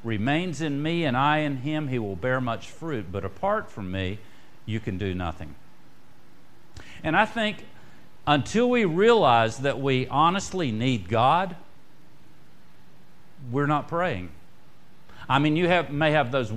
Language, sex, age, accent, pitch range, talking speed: English, male, 50-69, American, 100-150 Hz, 150 wpm